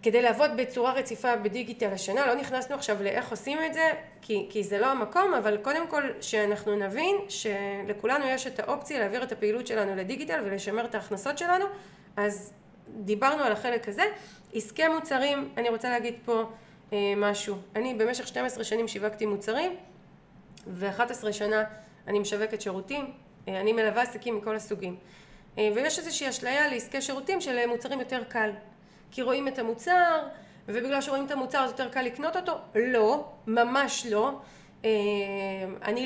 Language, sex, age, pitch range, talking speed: Hebrew, female, 30-49, 210-270 Hz, 150 wpm